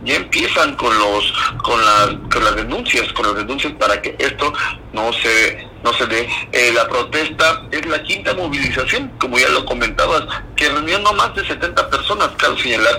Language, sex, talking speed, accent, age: Spanish, male, 185 wpm, Mexican, 50-69